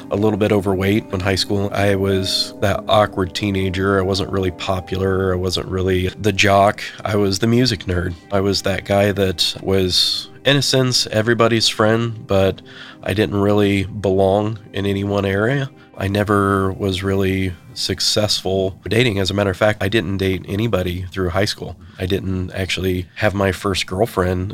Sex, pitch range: male, 95-110 Hz